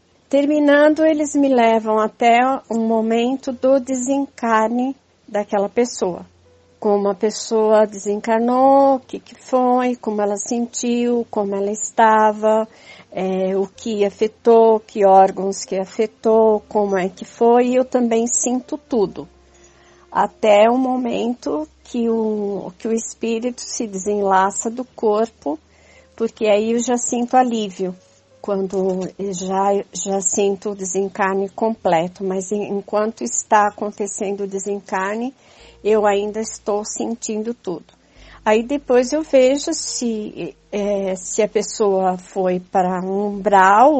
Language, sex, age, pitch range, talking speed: Portuguese, female, 50-69, 195-240 Hz, 125 wpm